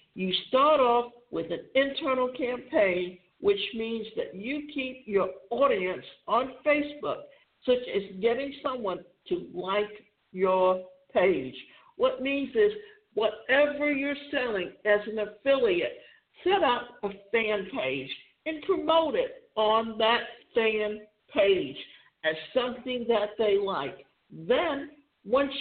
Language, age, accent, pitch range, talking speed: English, 60-79, American, 215-290 Hz, 120 wpm